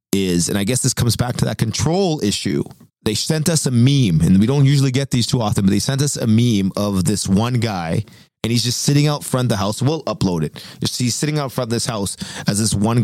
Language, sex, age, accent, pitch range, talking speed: English, male, 30-49, American, 110-155 Hz, 260 wpm